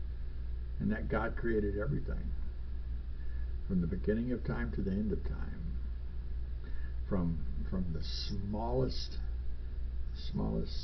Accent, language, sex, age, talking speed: American, English, male, 60-79, 110 wpm